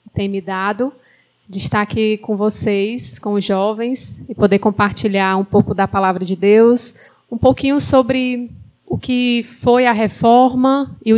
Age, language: 20-39, Portuguese